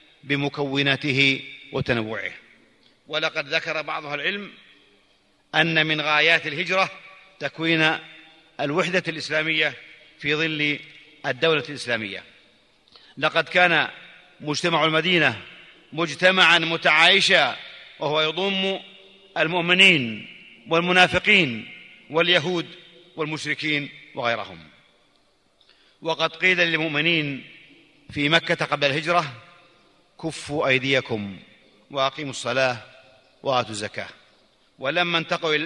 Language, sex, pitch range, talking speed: Arabic, male, 145-170 Hz, 75 wpm